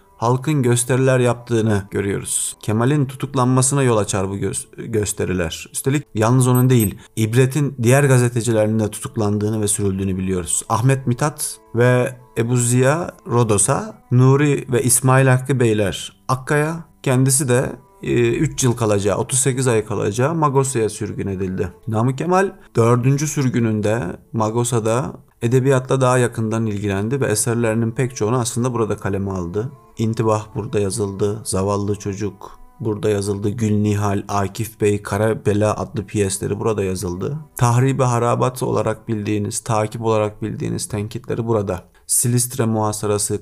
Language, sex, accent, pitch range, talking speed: Turkish, male, native, 105-130 Hz, 125 wpm